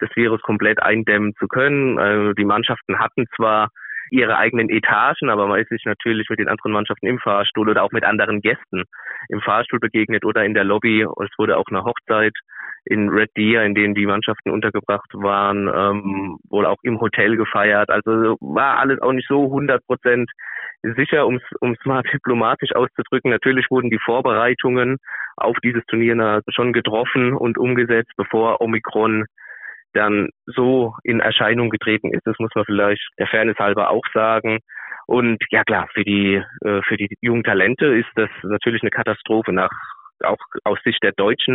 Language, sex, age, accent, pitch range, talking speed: German, male, 20-39, German, 105-120 Hz, 170 wpm